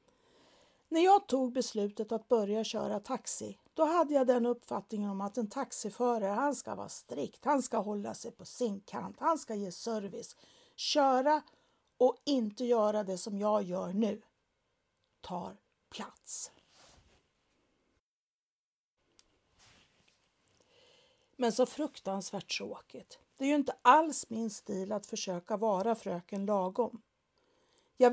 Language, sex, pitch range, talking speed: Swedish, female, 215-275 Hz, 130 wpm